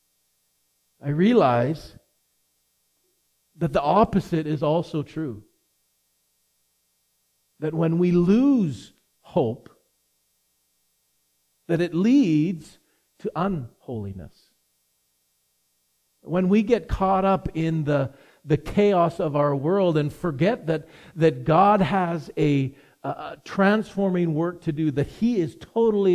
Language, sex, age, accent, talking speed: English, male, 50-69, American, 105 wpm